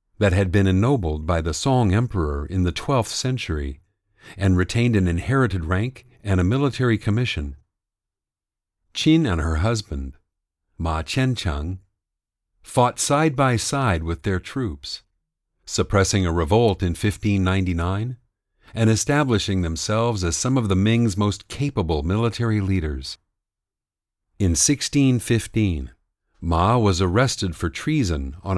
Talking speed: 125 wpm